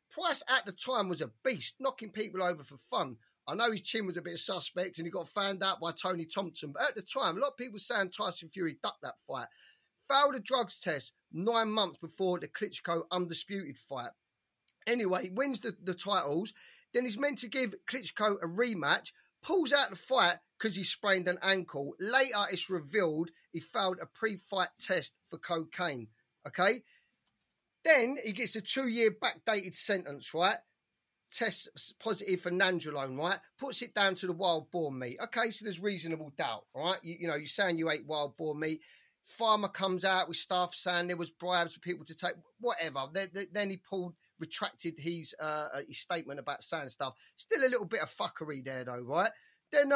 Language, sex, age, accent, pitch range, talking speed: English, male, 40-59, British, 170-220 Hz, 190 wpm